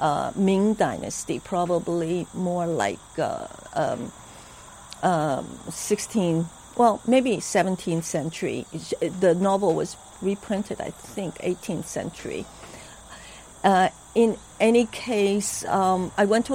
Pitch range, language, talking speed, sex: 170-200 Hz, English, 110 wpm, female